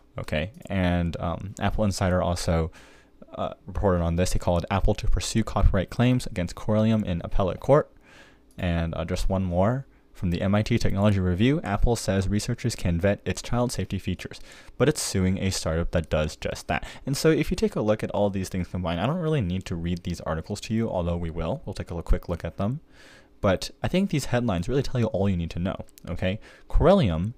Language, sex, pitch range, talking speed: English, male, 90-115 Hz, 215 wpm